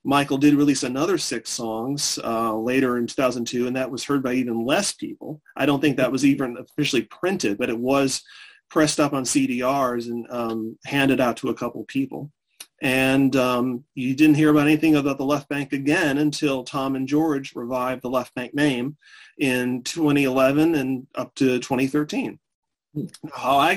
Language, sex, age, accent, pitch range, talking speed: English, male, 30-49, American, 125-145 Hz, 175 wpm